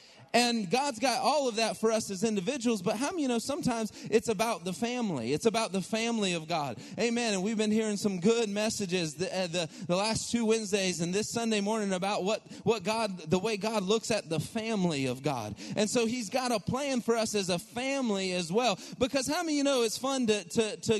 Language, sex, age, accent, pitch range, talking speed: English, male, 30-49, American, 205-240 Hz, 230 wpm